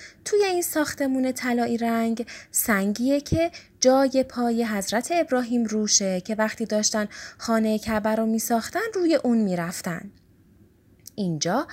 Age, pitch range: 20-39, 190-270 Hz